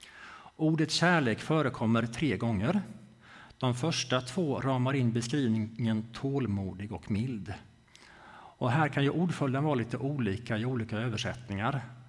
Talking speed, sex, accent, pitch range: 125 wpm, male, Norwegian, 110-135 Hz